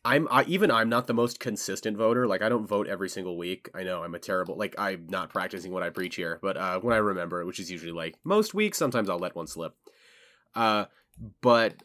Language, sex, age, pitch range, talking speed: English, male, 30-49, 100-125 Hz, 240 wpm